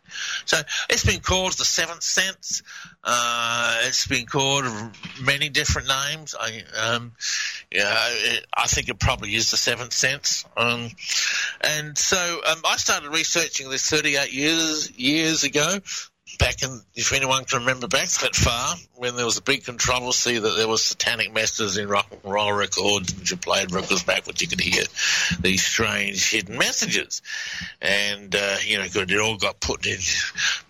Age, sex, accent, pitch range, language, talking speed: 60-79, male, Australian, 105-135 Hz, English, 160 wpm